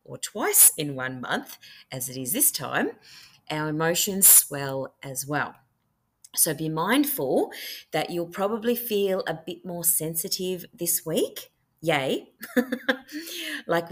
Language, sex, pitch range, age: English, female, 145-195 Hz, 30-49